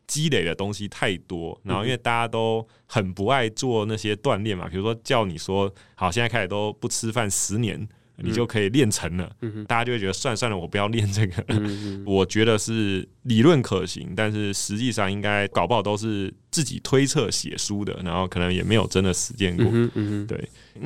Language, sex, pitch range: Chinese, male, 100-125 Hz